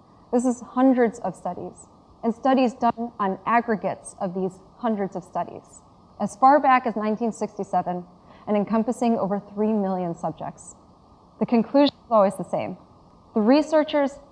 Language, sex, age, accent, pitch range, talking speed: English, female, 20-39, American, 185-235 Hz, 145 wpm